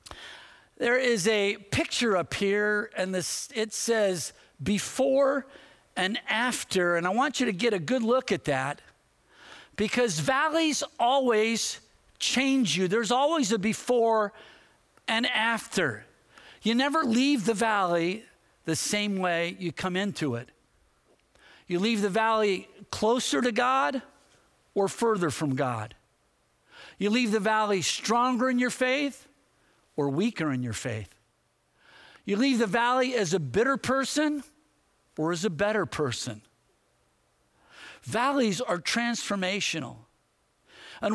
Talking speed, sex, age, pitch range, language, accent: 130 wpm, male, 50-69, 185-250 Hz, English, American